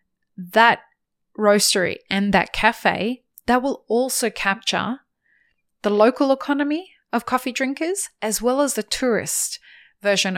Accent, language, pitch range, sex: Australian, English, 190-230 Hz, female